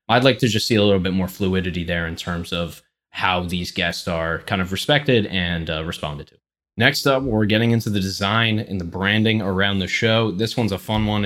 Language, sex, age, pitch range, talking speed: English, male, 20-39, 95-115 Hz, 230 wpm